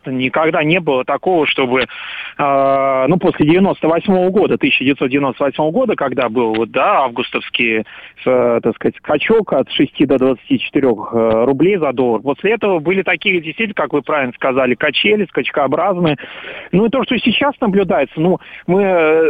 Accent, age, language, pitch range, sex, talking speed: native, 30-49, Russian, 135-190 Hz, male, 135 wpm